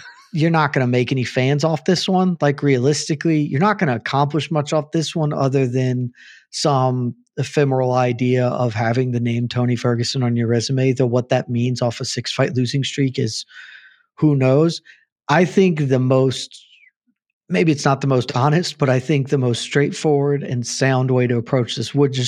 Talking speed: 190 wpm